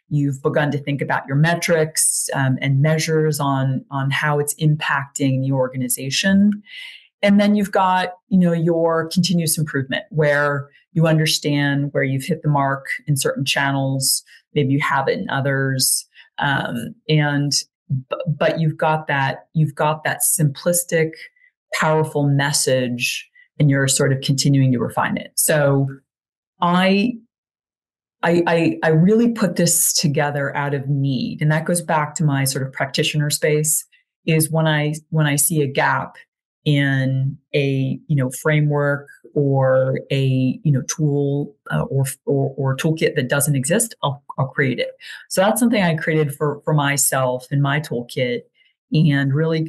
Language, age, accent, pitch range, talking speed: English, 30-49, American, 140-165 Hz, 155 wpm